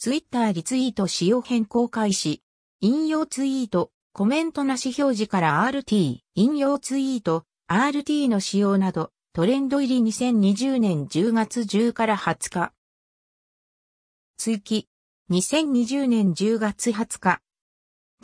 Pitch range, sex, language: 185-260 Hz, female, Japanese